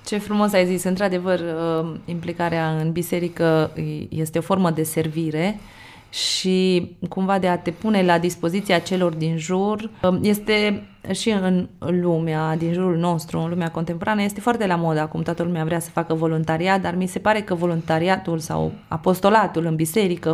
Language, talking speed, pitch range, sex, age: Romanian, 160 wpm, 165-205 Hz, female, 20-39